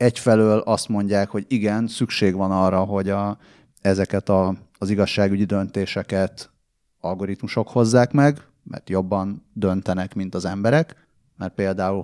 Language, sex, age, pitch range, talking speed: Hungarian, male, 30-49, 95-115 Hz, 120 wpm